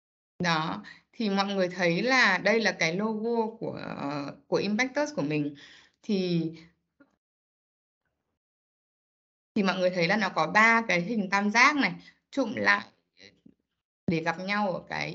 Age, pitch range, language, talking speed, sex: 20-39, 175-235 Hz, Vietnamese, 145 wpm, female